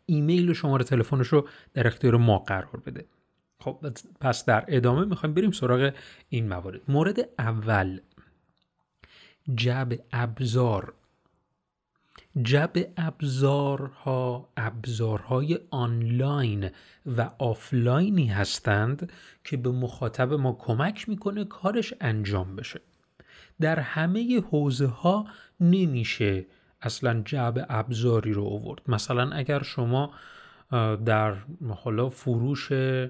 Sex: male